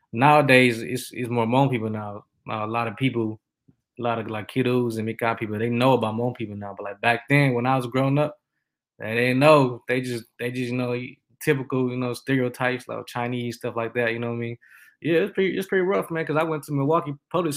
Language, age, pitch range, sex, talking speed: English, 20-39, 115-130 Hz, male, 245 wpm